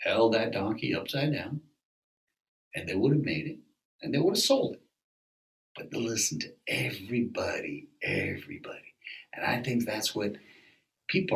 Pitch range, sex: 115-150 Hz, male